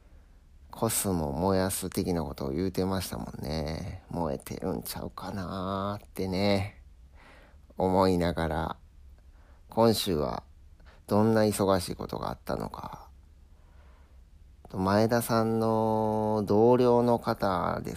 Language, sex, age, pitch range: Japanese, male, 40-59, 75-100 Hz